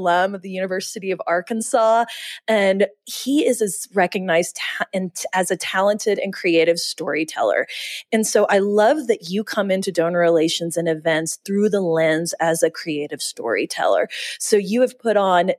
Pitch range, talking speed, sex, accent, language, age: 170-205 Hz, 155 wpm, female, American, English, 30-49